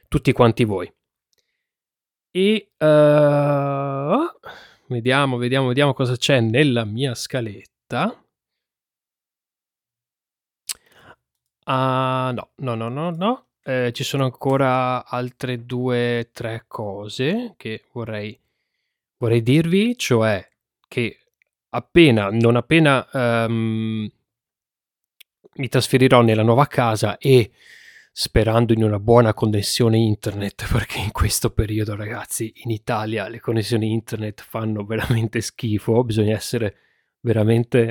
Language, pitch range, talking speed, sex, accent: Italian, 110-130 Hz, 105 wpm, male, native